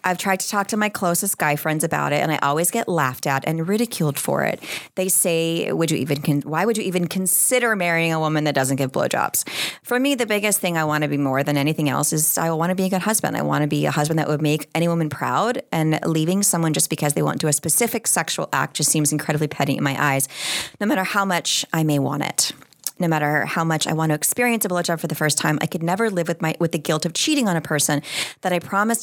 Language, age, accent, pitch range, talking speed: English, 30-49, American, 150-185 Hz, 270 wpm